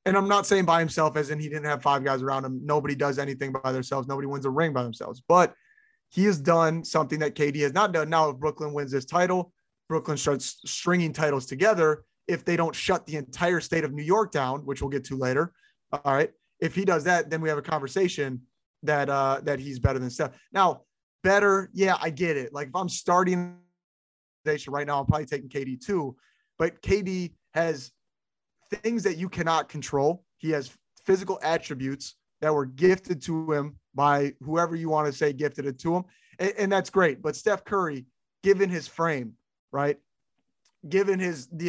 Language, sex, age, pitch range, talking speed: English, male, 30-49, 140-175 Hz, 200 wpm